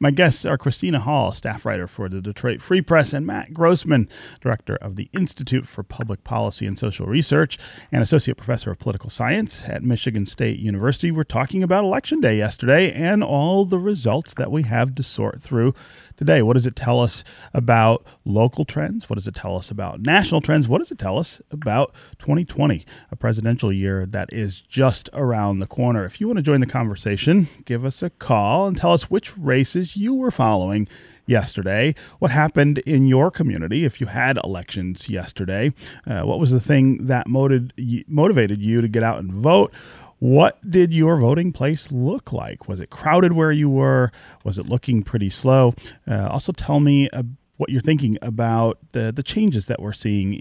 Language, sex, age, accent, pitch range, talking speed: English, male, 30-49, American, 110-150 Hz, 190 wpm